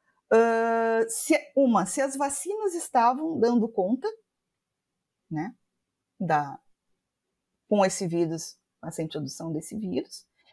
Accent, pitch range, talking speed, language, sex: Brazilian, 165-260 Hz, 110 wpm, Portuguese, female